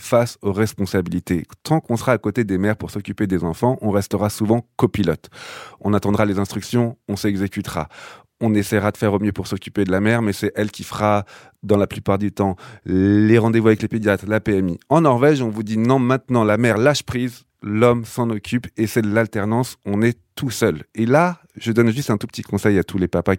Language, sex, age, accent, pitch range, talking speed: French, male, 30-49, French, 100-120 Hz, 225 wpm